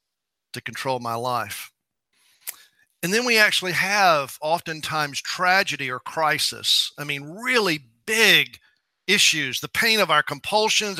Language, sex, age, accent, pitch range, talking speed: English, male, 50-69, American, 140-185 Hz, 125 wpm